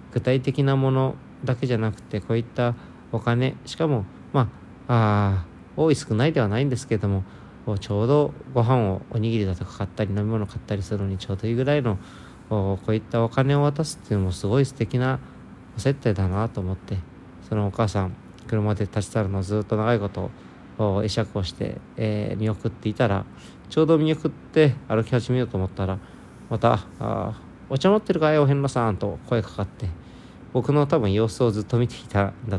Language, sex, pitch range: Japanese, male, 100-125 Hz